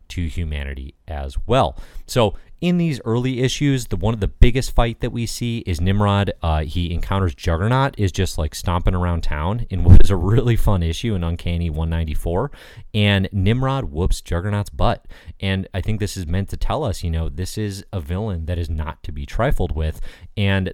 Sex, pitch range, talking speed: male, 80-100 Hz, 195 wpm